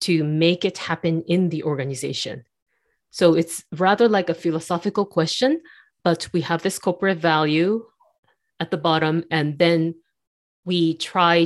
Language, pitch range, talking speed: English, 155-190 Hz, 140 wpm